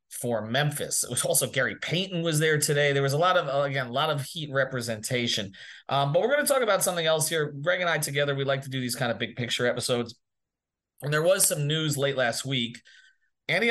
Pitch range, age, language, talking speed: 130-170 Hz, 30-49, English, 235 wpm